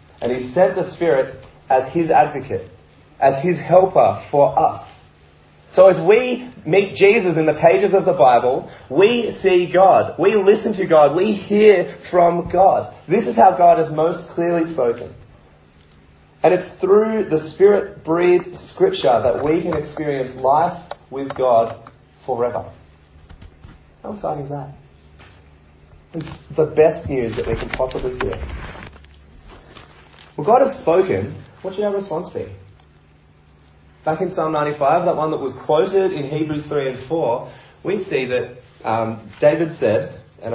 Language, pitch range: English, 105-170 Hz